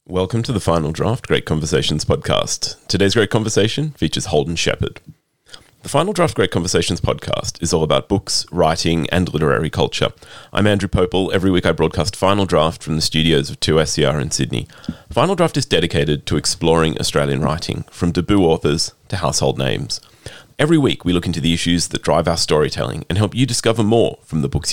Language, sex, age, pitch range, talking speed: English, male, 30-49, 85-115 Hz, 185 wpm